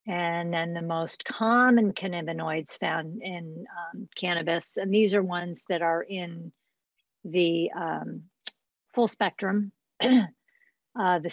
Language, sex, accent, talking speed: English, female, American, 120 wpm